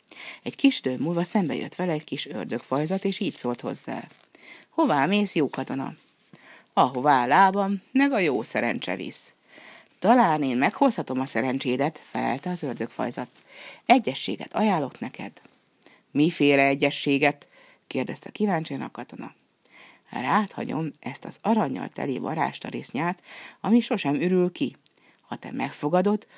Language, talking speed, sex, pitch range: Hungarian, 130 wpm, female, 145-200 Hz